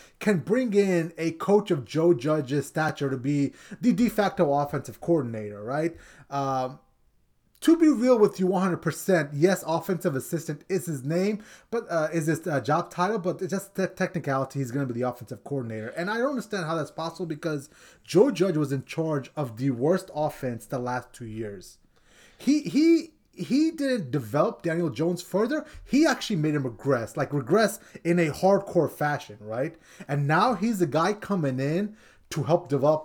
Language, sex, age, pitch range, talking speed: English, male, 30-49, 145-195 Hz, 180 wpm